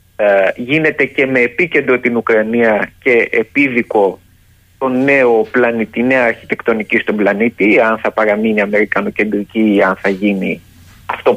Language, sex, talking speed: Greek, male, 125 wpm